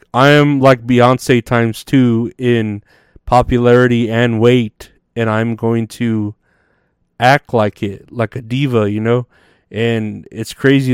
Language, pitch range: English, 110-135 Hz